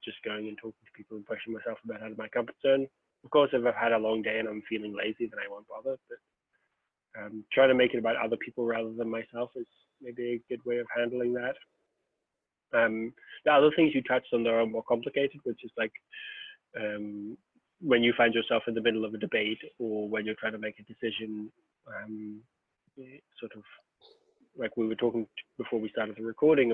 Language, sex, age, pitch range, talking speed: English, male, 20-39, 110-135 Hz, 210 wpm